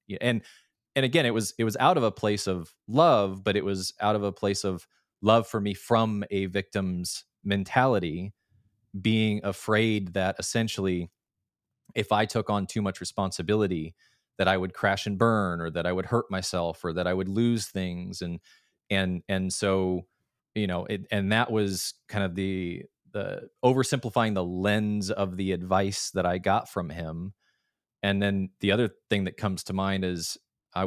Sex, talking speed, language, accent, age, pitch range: male, 180 wpm, English, American, 20-39, 95-110 Hz